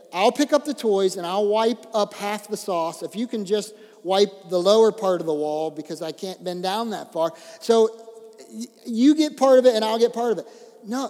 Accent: American